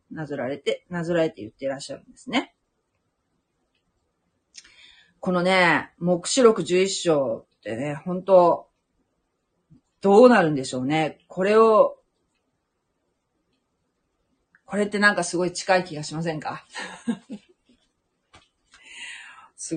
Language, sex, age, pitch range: Japanese, female, 40-59, 165-230 Hz